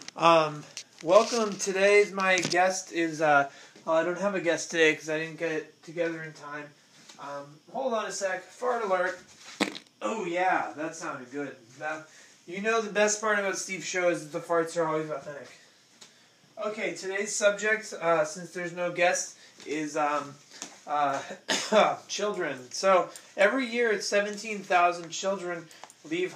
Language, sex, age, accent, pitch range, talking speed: English, male, 20-39, American, 155-185 Hz, 155 wpm